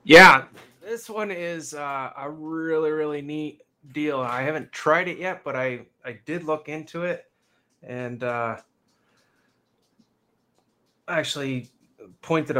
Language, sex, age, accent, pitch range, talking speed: English, male, 20-39, American, 115-140 Hz, 125 wpm